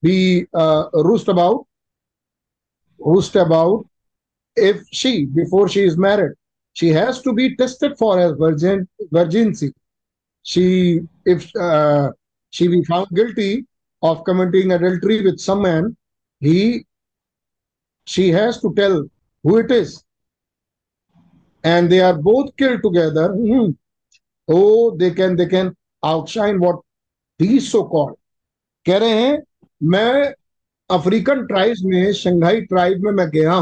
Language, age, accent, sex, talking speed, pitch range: Hindi, 50-69, native, male, 125 wpm, 170-215 Hz